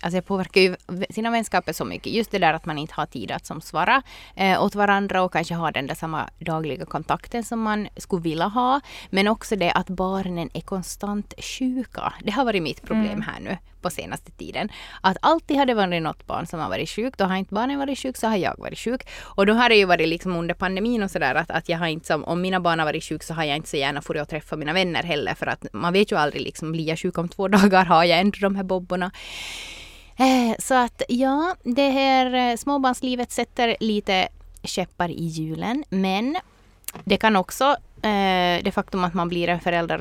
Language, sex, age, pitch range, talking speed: Swedish, female, 20-39, 165-225 Hz, 225 wpm